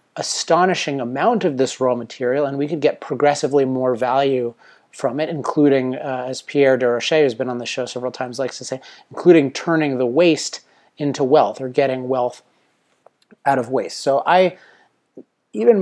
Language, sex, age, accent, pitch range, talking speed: English, male, 30-49, American, 130-155 Hz, 170 wpm